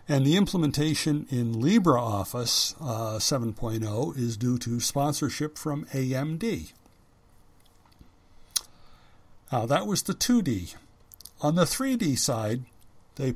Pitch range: 115-150 Hz